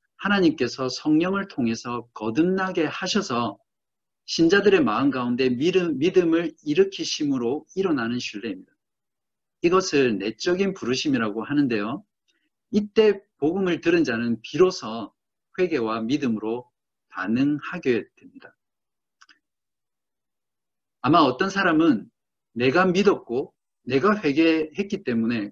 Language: Korean